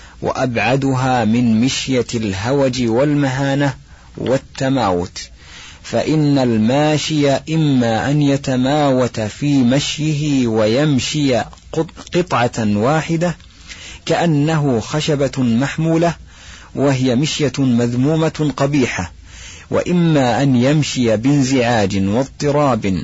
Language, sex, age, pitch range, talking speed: Arabic, male, 50-69, 115-145 Hz, 75 wpm